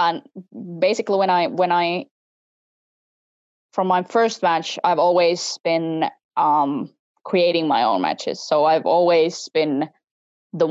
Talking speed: 130 wpm